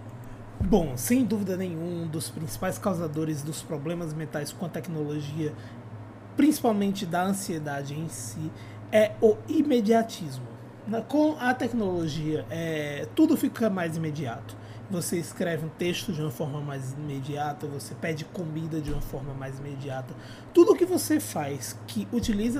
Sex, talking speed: male, 140 wpm